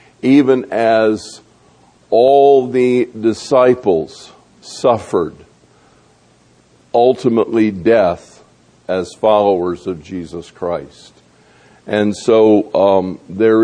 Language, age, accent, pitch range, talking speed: English, 50-69, American, 105-125 Hz, 75 wpm